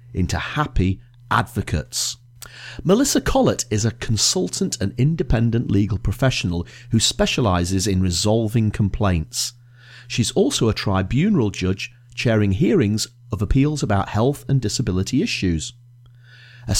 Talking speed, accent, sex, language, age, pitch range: 115 wpm, British, male, English, 30-49, 100-135 Hz